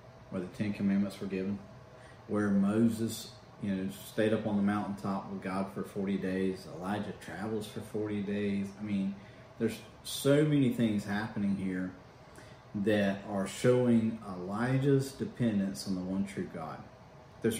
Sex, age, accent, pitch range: male, 40-59, American, 95-120 Hz